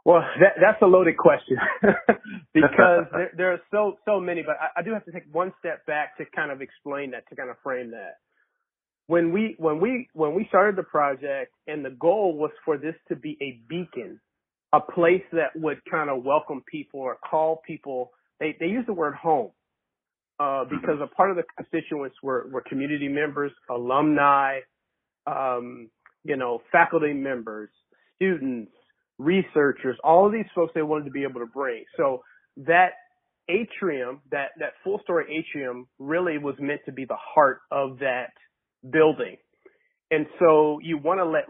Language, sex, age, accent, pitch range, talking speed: English, male, 30-49, American, 140-180 Hz, 180 wpm